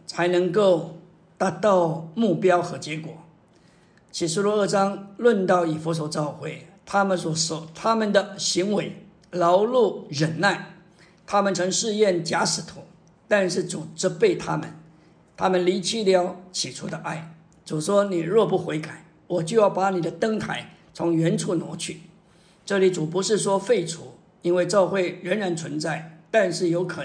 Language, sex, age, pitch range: Chinese, male, 50-69, 170-190 Hz